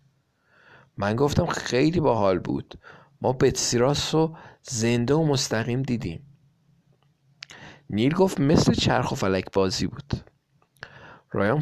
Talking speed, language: 115 wpm, Persian